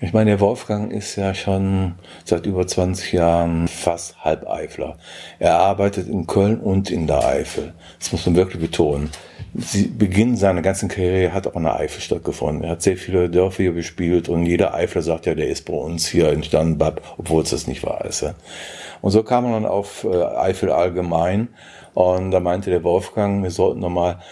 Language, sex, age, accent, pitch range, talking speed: German, male, 50-69, German, 85-95 Hz, 195 wpm